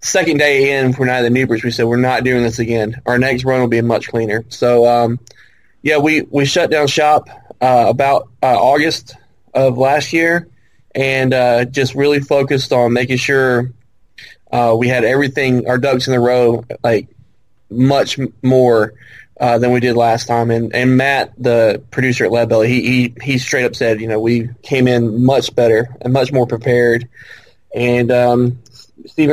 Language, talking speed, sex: English, 185 wpm, male